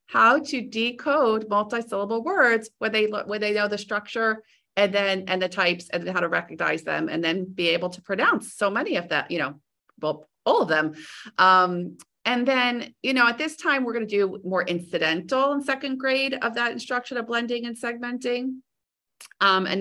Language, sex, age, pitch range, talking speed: English, female, 30-49, 185-235 Hz, 195 wpm